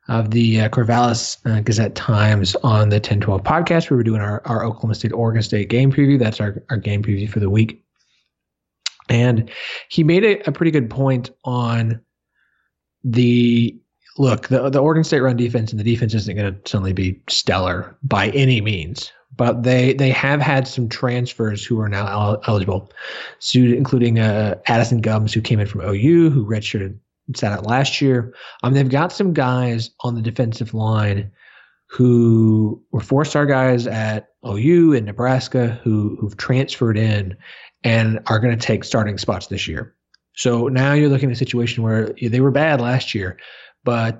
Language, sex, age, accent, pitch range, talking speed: English, male, 30-49, American, 105-130 Hz, 175 wpm